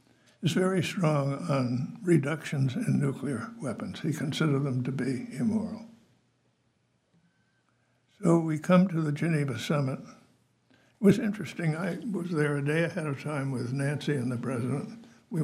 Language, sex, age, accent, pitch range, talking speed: English, male, 60-79, American, 140-170 Hz, 150 wpm